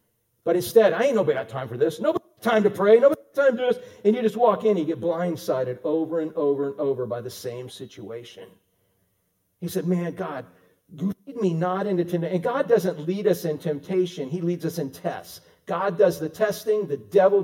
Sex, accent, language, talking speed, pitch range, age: male, American, English, 225 wpm, 130-205 Hz, 50-69